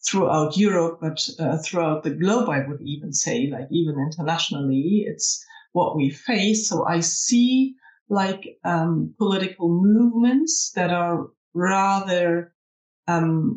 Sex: female